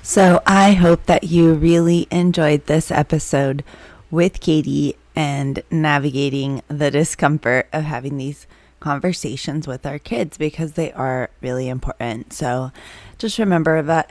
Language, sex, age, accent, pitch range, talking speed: English, female, 20-39, American, 140-170 Hz, 130 wpm